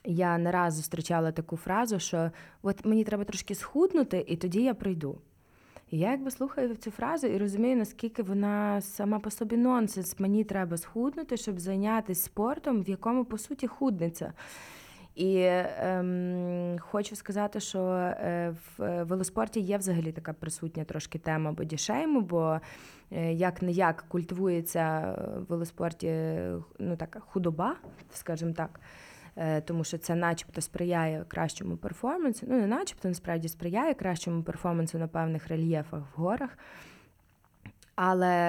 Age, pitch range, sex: 20-39, 165-210 Hz, female